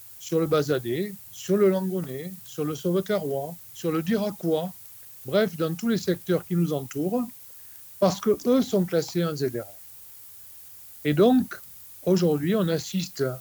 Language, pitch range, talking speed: French, 120-175 Hz, 145 wpm